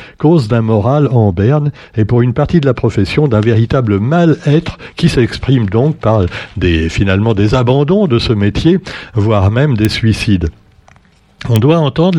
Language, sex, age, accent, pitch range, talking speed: French, male, 60-79, French, 105-145 Hz, 165 wpm